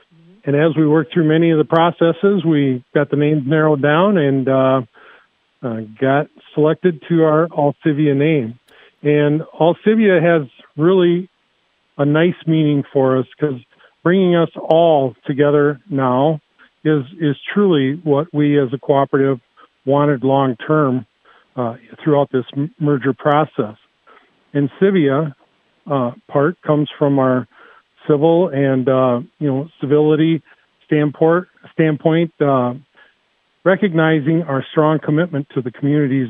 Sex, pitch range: male, 135-160 Hz